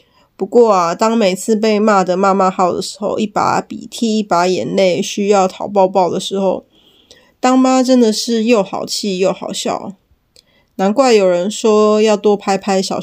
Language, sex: Chinese, female